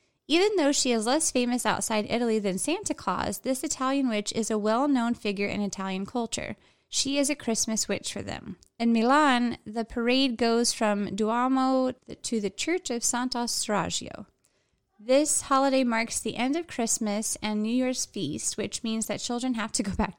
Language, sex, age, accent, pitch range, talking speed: English, female, 20-39, American, 205-265 Hz, 180 wpm